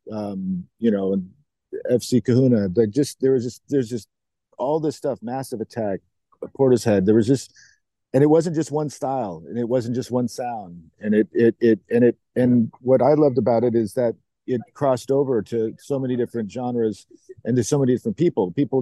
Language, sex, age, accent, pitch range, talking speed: English, male, 50-69, American, 110-130 Hz, 205 wpm